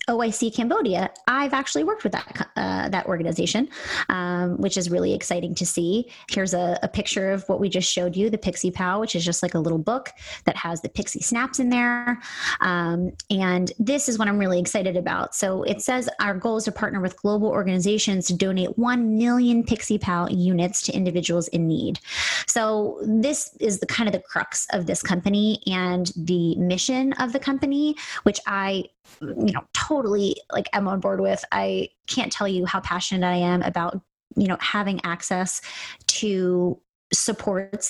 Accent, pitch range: American, 180-220 Hz